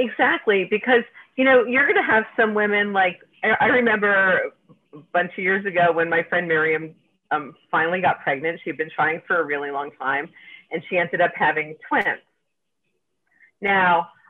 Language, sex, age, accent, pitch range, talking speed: English, female, 40-59, American, 165-220 Hz, 170 wpm